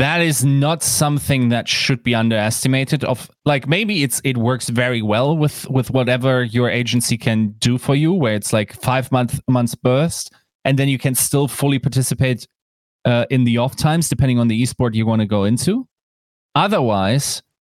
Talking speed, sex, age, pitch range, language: 185 wpm, male, 20-39, 110-140 Hz, English